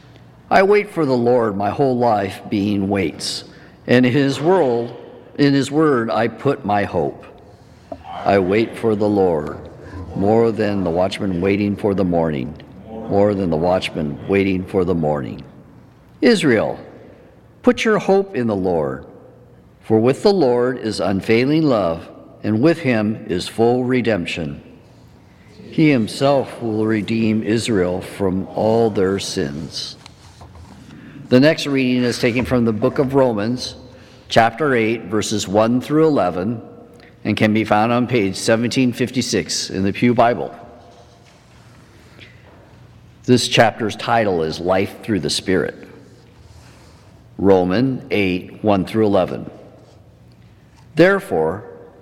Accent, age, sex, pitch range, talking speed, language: American, 50-69, male, 100-125 Hz, 125 wpm, English